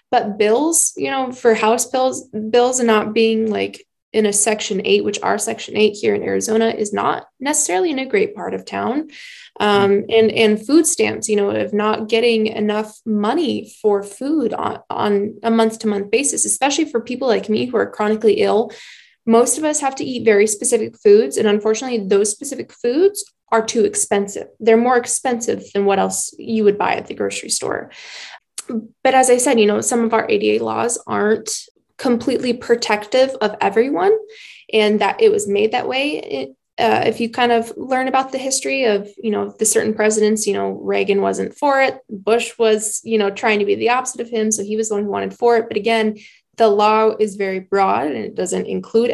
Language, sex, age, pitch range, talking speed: English, female, 20-39, 210-260 Hz, 205 wpm